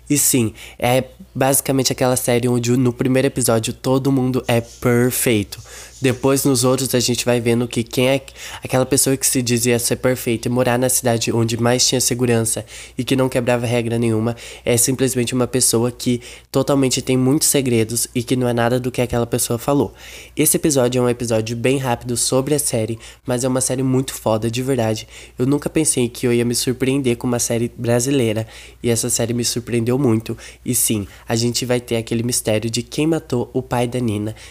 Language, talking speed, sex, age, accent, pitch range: Portuguese, 200 wpm, male, 10-29, Brazilian, 115-130 Hz